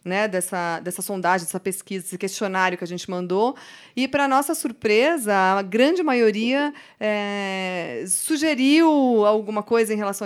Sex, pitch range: female, 190-240 Hz